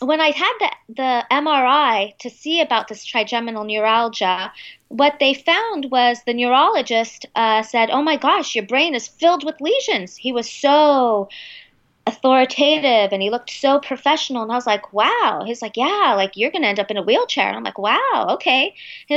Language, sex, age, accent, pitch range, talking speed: English, female, 30-49, American, 220-275 Hz, 190 wpm